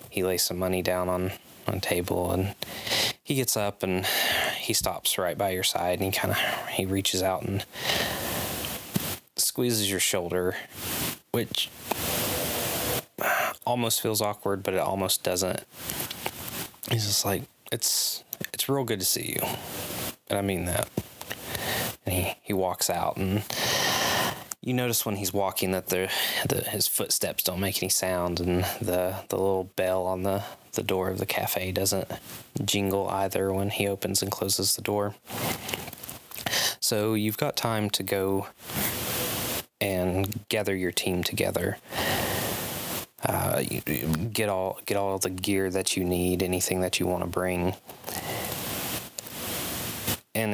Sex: male